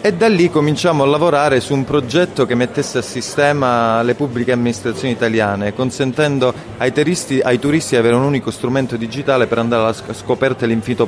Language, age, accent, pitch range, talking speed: Italian, 30-49, native, 115-145 Hz, 170 wpm